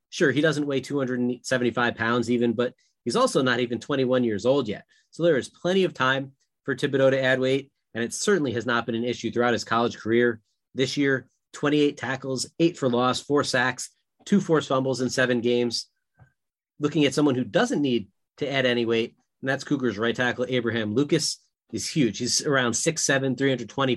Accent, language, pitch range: American, English, 120-145 Hz